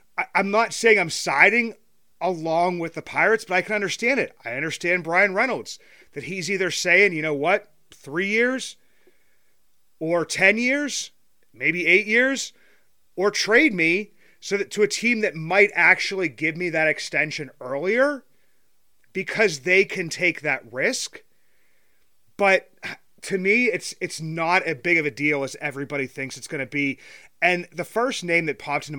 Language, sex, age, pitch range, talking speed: English, male, 30-49, 150-200 Hz, 165 wpm